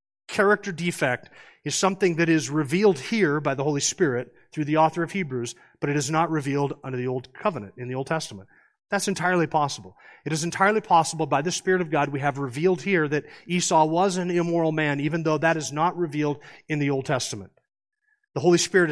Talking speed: 205 wpm